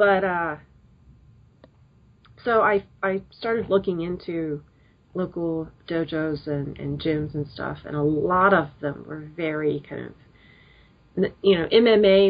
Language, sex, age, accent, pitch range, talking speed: English, female, 40-59, American, 155-190 Hz, 130 wpm